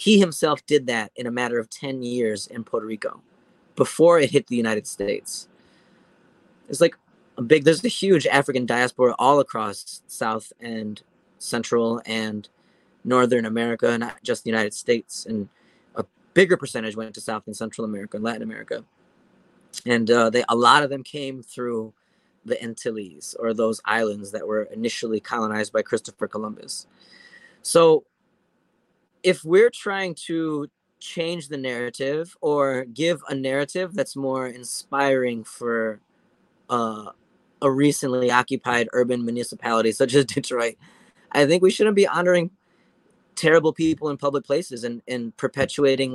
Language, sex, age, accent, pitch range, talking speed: English, male, 30-49, American, 115-150 Hz, 150 wpm